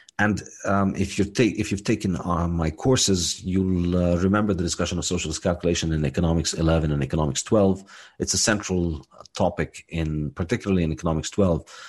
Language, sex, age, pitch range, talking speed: English, male, 40-59, 80-105 Hz, 170 wpm